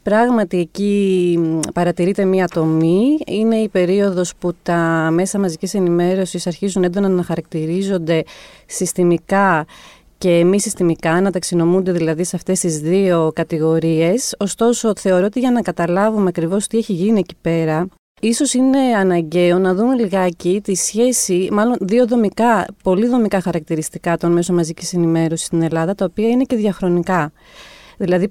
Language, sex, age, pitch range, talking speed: Greek, female, 30-49, 175-215 Hz, 140 wpm